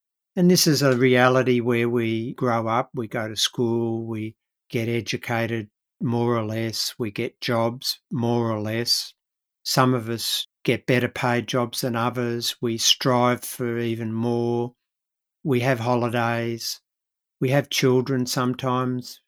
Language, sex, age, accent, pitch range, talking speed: English, male, 60-79, Australian, 120-135 Hz, 145 wpm